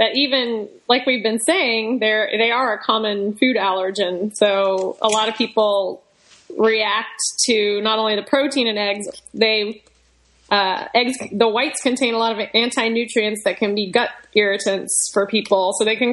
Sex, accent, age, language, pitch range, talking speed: female, American, 20-39, English, 200-230 Hz, 175 wpm